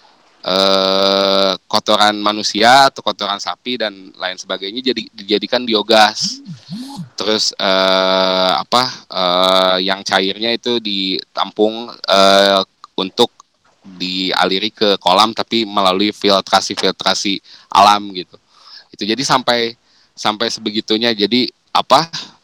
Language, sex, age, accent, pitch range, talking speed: Indonesian, male, 20-39, native, 100-115 Hz, 100 wpm